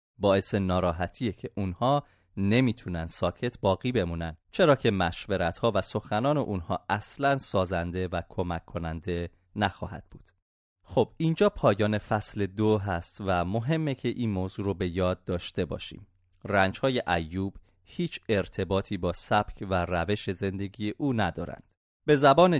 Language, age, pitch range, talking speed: Persian, 30-49, 90-115 Hz, 135 wpm